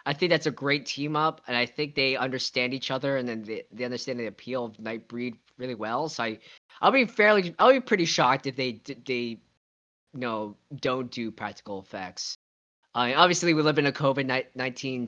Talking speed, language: 205 wpm, English